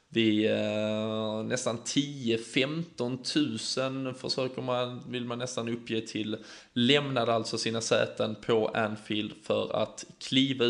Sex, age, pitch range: male, 20-39, 110-120 Hz